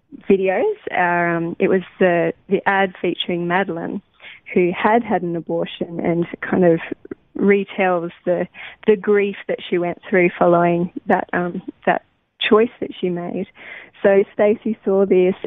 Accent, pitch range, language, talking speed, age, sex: Australian, 180-205 Hz, English, 145 wpm, 20-39, female